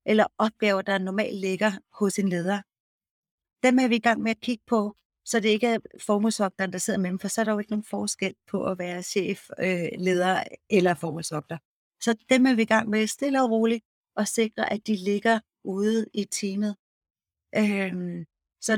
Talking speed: 195 wpm